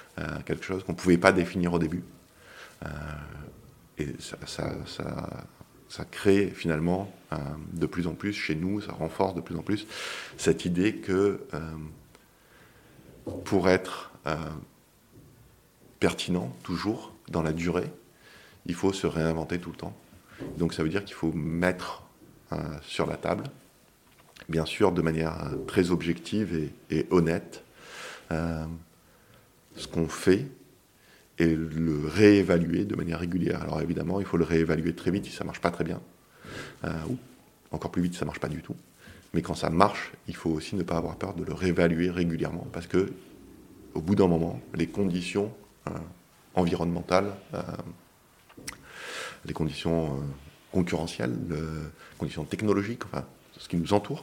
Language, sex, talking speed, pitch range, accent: French, male, 160 wpm, 80-95 Hz, French